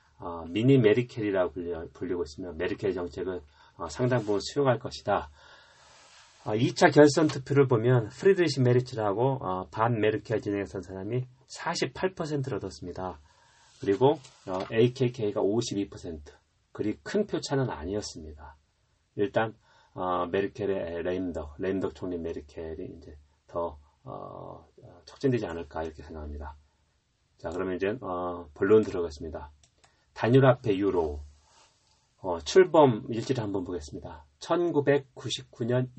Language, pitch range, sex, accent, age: Korean, 85-125 Hz, male, native, 30-49